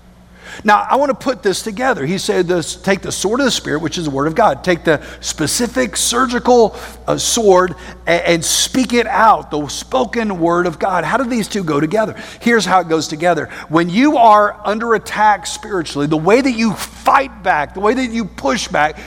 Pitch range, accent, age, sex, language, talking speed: 165-240 Hz, American, 50-69, male, English, 210 wpm